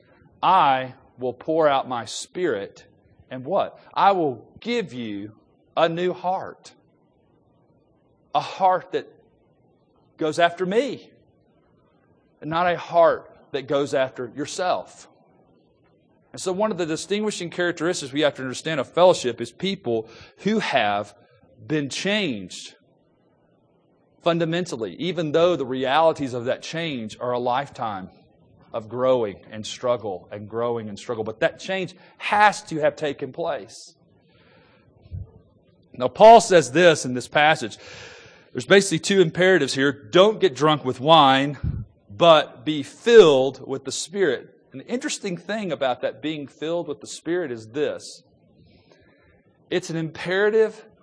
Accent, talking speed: American, 135 wpm